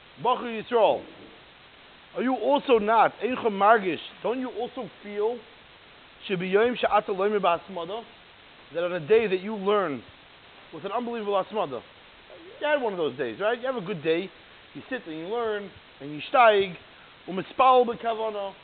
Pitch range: 175-230 Hz